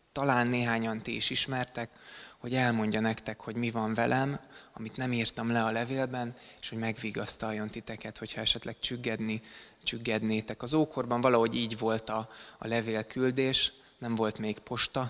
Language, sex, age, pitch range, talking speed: Hungarian, male, 20-39, 110-120 Hz, 150 wpm